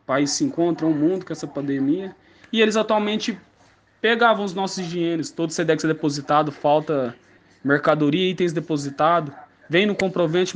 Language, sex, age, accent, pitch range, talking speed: Portuguese, male, 20-39, Brazilian, 150-175 Hz, 155 wpm